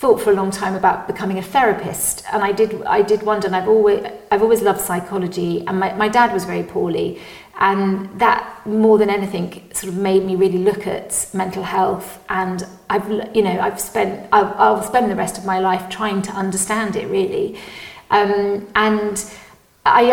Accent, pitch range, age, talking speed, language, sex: British, 190-215 Hz, 40-59, 195 wpm, English, female